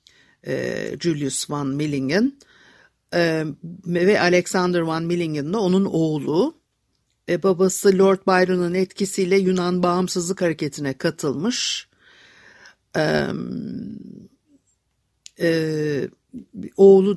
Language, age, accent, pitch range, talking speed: Turkish, 60-79, native, 160-200 Hz, 65 wpm